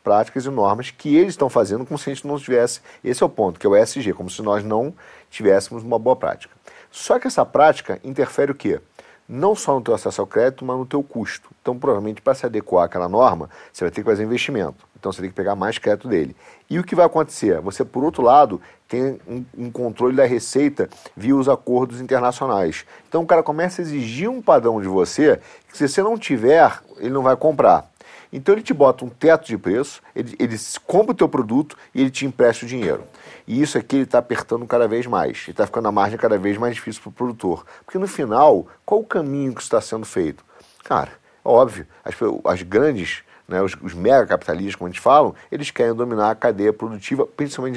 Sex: male